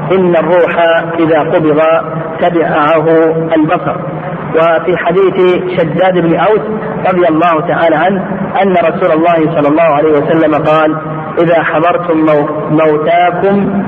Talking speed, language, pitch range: 110 wpm, Arabic, 160-185 Hz